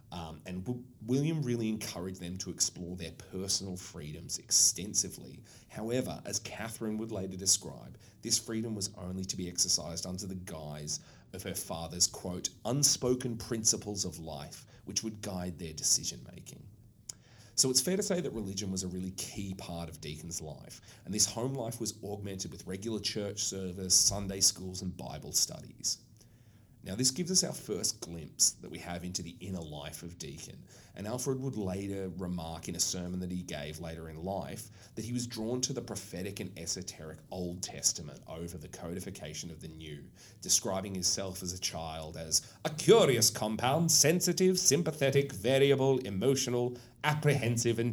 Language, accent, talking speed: English, Australian, 165 wpm